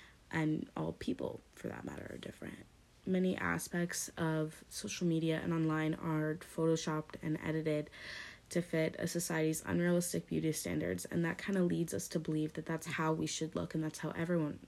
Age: 20-39